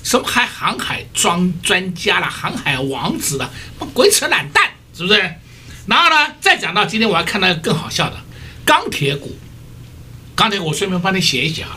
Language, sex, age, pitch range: Chinese, male, 60-79, 160-220 Hz